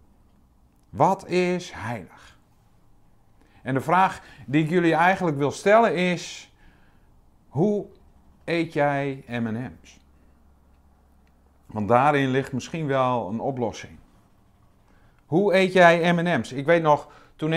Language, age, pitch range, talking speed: Dutch, 50-69, 100-160 Hz, 110 wpm